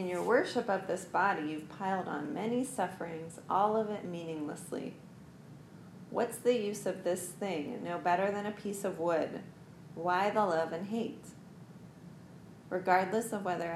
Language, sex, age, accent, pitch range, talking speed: English, female, 40-59, American, 175-210 Hz, 155 wpm